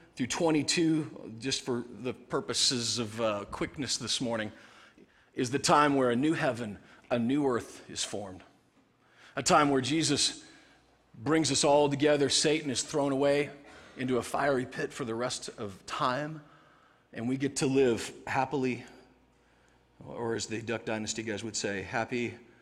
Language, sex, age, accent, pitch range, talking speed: English, male, 40-59, American, 120-155 Hz, 155 wpm